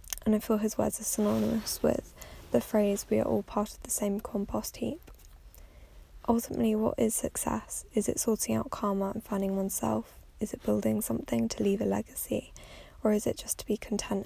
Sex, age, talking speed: female, 10-29, 195 wpm